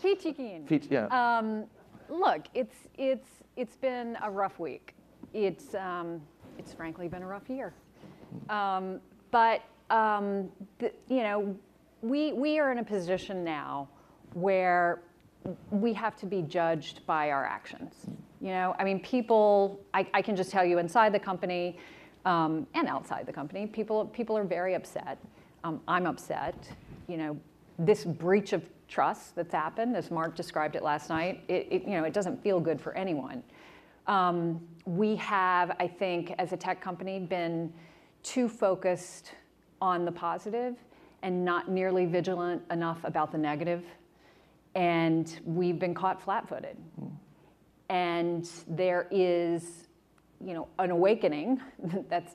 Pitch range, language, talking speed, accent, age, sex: 170-205 Hz, English, 145 wpm, American, 40-59, female